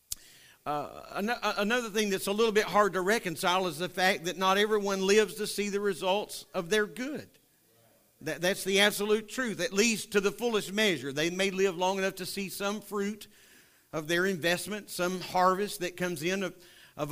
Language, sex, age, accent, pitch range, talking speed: English, male, 50-69, American, 140-195 Hz, 185 wpm